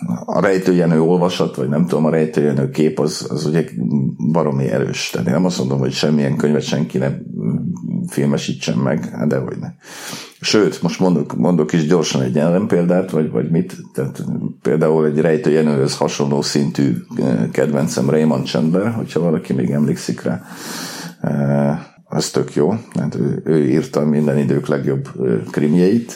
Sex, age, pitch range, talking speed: male, 50-69, 70-80 Hz, 150 wpm